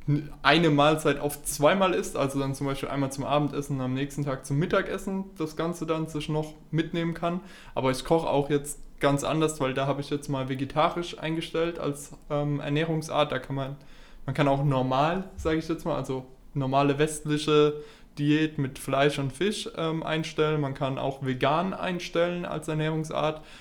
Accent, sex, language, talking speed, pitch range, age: German, male, German, 180 wpm, 140-160 Hz, 20-39